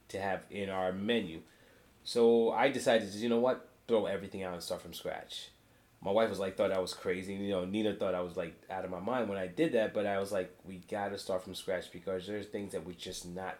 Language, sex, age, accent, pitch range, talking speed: English, male, 20-39, American, 95-115 Hz, 260 wpm